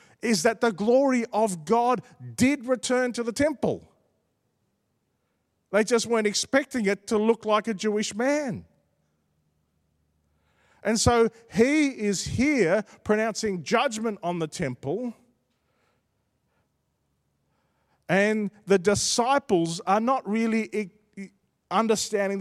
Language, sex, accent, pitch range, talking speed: English, male, Australian, 150-225 Hz, 105 wpm